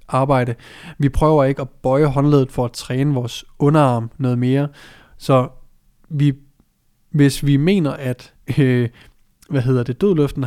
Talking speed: 125 wpm